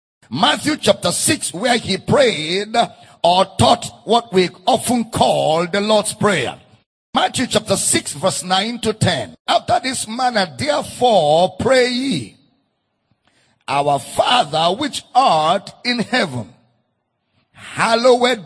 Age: 50-69